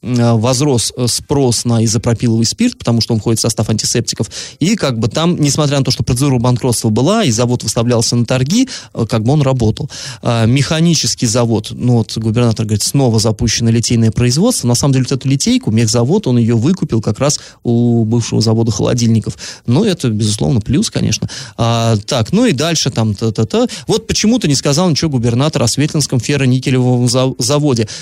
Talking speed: 165 wpm